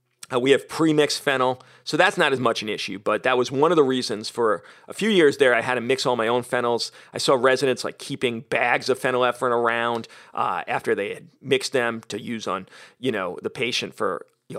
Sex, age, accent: male, 40-59, American